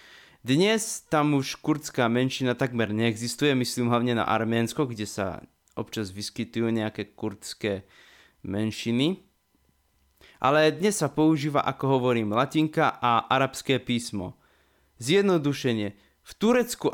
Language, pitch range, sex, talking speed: Slovak, 120-160 Hz, male, 110 wpm